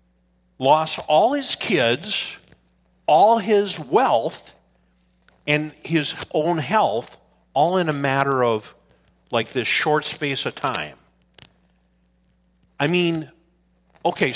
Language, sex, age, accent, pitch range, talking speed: English, male, 50-69, American, 95-155 Hz, 105 wpm